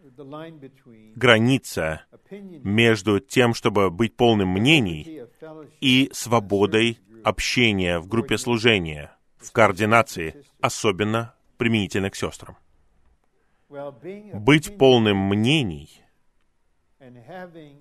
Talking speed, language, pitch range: 75 wpm, Russian, 100-130 Hz